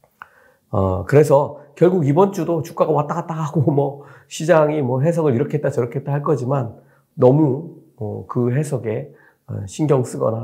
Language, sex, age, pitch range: Korean, male, 40-59, 115-155 Hz